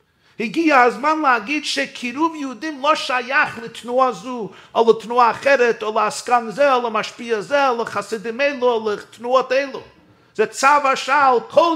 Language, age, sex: Hebrew, 50-69, male